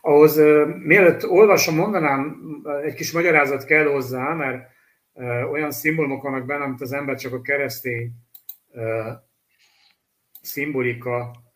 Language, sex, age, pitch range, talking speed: Hungarian, male, 60-79, 120-145 Hz, 110 wpm